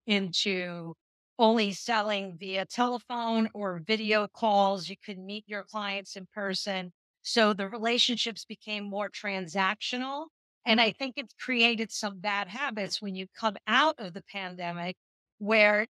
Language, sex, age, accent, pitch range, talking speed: English, female, 50-69, American, 185-225 Hz, 140 wpm